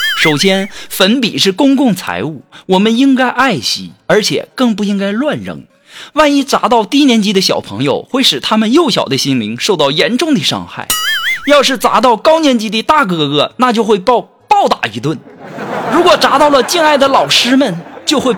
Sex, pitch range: male, 200-285 Hz